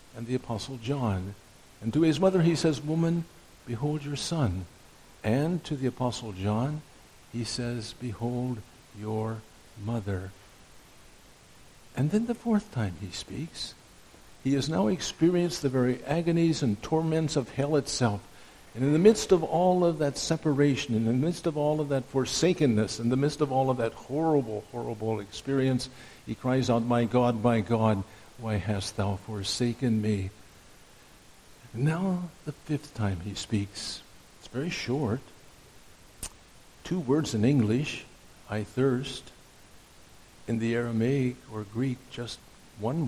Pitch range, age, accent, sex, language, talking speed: 110-145 Hz, 60-79, American, male, English, 145 wpm